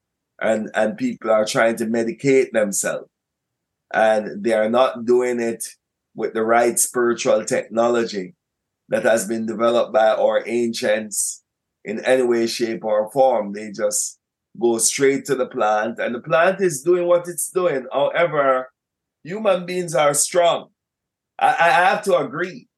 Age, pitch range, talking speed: 30-49, 115-145 Hz, 150 wpm